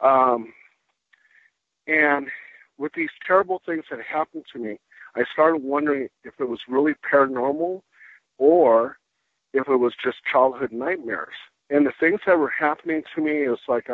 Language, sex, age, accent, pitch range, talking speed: English, male, 50-69, American, 125-155 Hz, 155 wpm